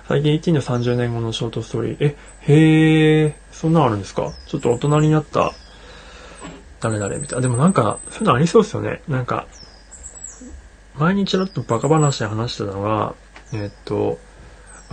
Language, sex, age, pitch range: Japanese, male, 20-39, 105-150 Hz